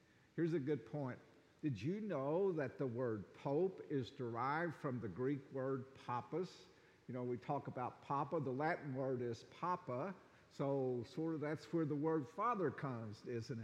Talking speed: 170 wpm